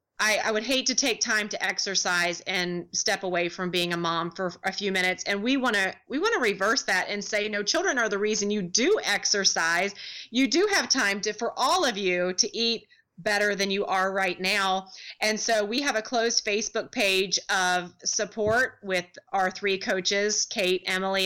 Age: 30-49